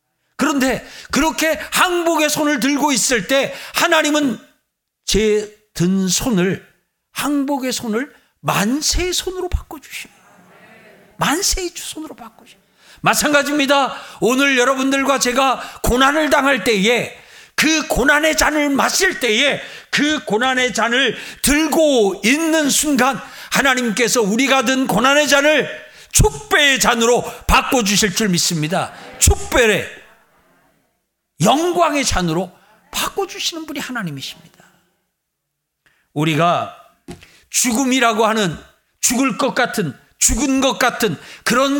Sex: male